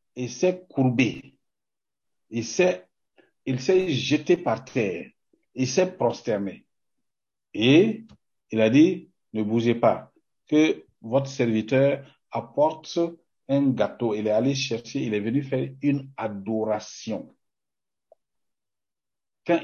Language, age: French, 60-79